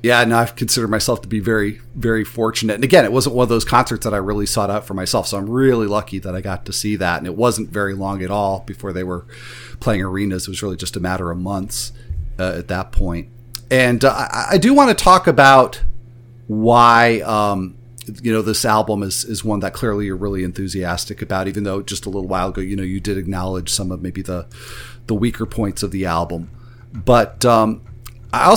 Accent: American